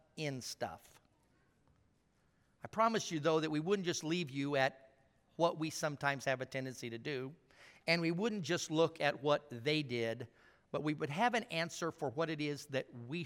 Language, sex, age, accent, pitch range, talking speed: English, male, 50-69, American, 130-175 Hz, 185 wpm